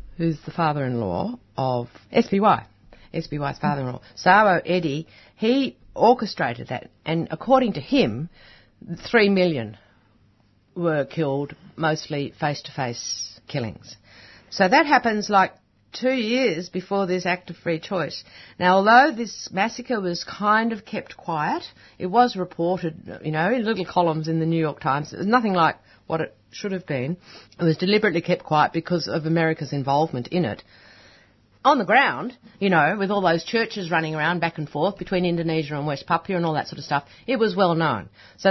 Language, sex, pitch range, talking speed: English, female, 135-190 Hz, 165 wpm